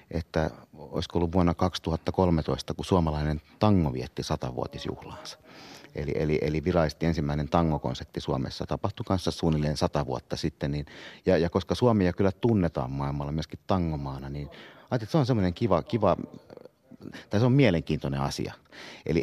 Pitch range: 70-90 Hz